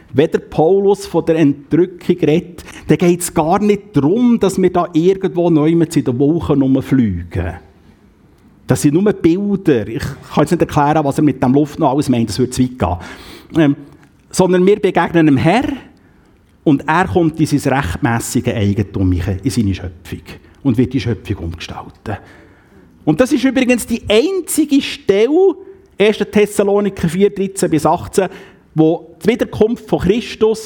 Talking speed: 160 wpm